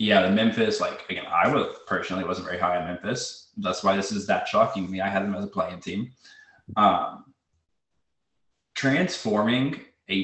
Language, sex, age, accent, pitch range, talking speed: English, male, 20-39, American, 95-130 Hz, 175 wpm